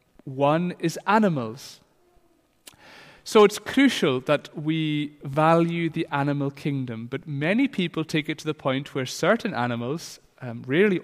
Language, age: English, 30-49